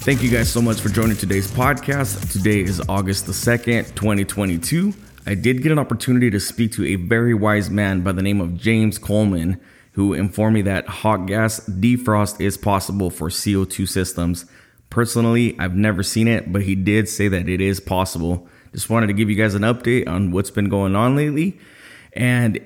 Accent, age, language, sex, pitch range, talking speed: American, 20-39, English, male, 95-115 Hz, 195 wpm